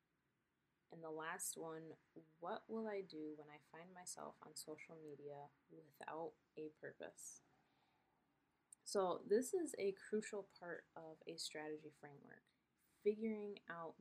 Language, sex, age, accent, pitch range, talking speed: English, female, 20-39, American, 155-190 Hz, 130 wpm